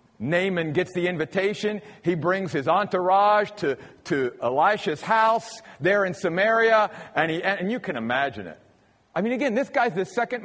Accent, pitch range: American, 175-250 Hz